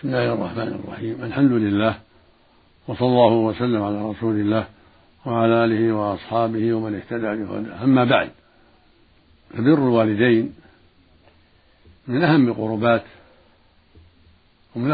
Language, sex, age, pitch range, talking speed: Arabic, male, 60-79, 95-120 Hz, 105 wpm